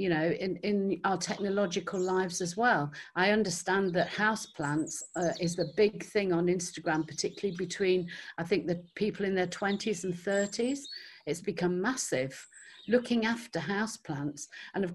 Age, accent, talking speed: 50-69, British, 155 wpm